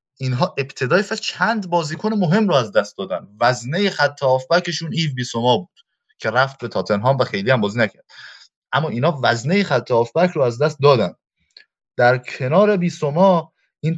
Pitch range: 125-180 Hz